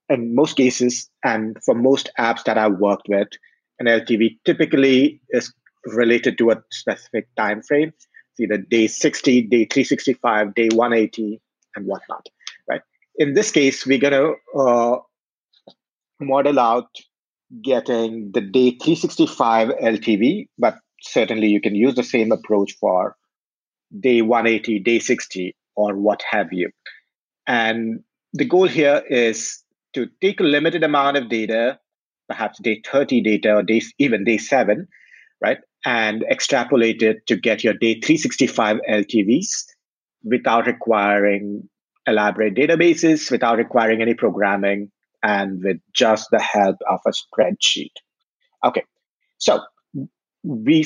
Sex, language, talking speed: male, English, 130 wpm